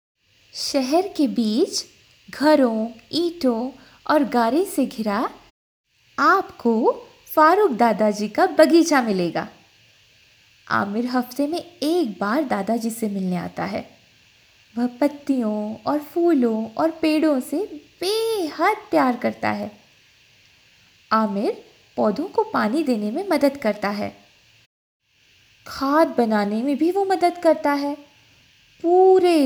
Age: 20-39